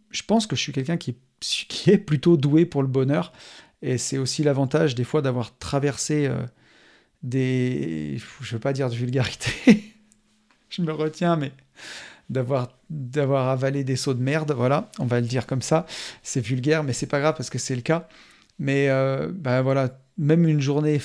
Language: French